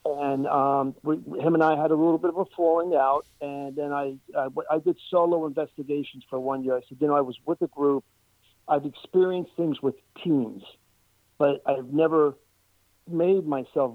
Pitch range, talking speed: 130-160 Hz, 180 wpm